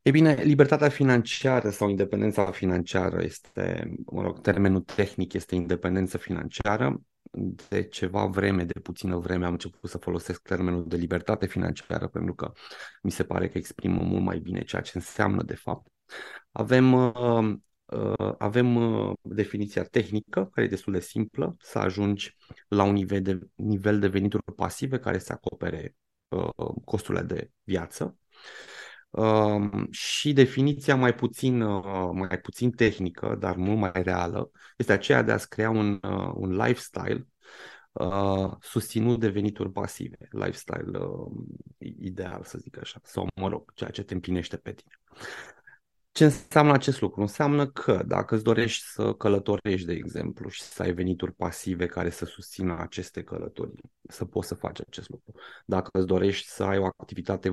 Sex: male